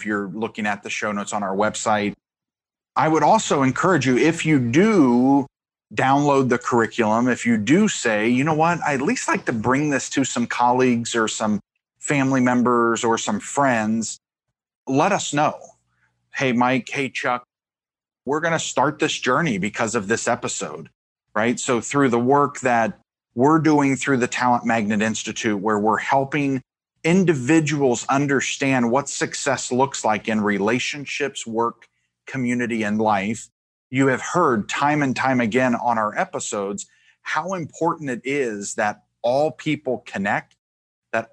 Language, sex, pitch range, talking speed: English, male, 115-140 Hz, 160 wpm